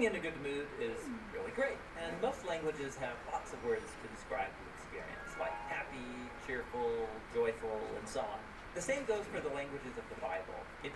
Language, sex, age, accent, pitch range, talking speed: English, male, 40-59, American, 140-230 Hz, 190 wpm